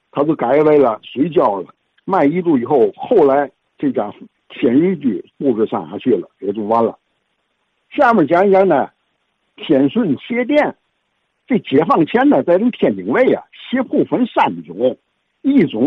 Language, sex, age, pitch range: Chinese, male, 60-79, 175-275 Hz